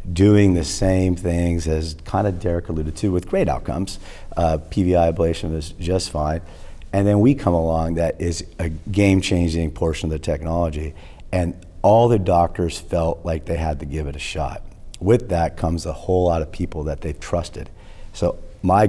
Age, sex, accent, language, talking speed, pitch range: 40-59, male, American, English, 185 wpm, 80-95 Hz